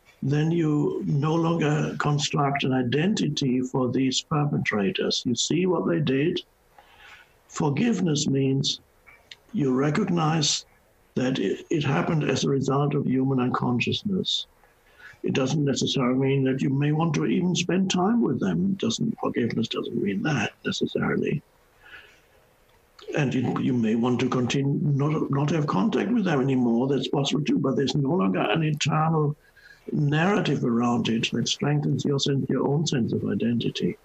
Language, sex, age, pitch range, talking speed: English, male, 60-79, 130-160 Hz, 150 wpm